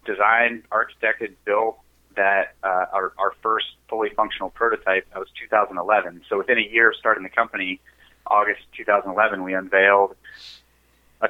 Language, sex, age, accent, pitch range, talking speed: English, male, 30-49, American, 90-110 Hz, 145 wpm